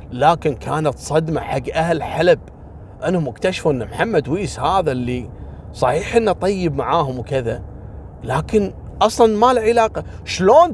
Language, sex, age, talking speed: Arabic, male, 30-49, 135 wpm